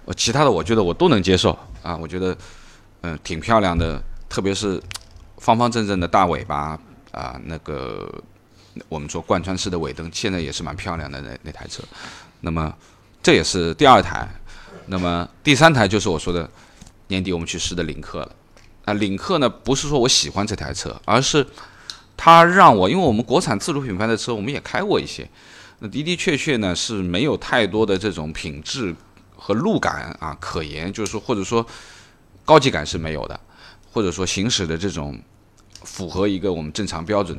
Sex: male